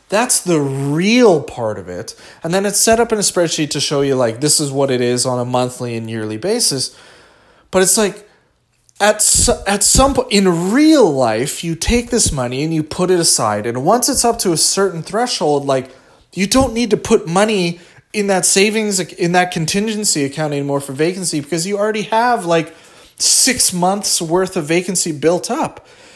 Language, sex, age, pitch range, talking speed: English, male, 20-39, 130-190 Hz, 195 wpm